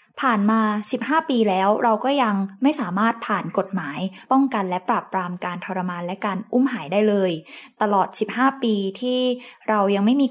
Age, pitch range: 20-39, 190-235 Hz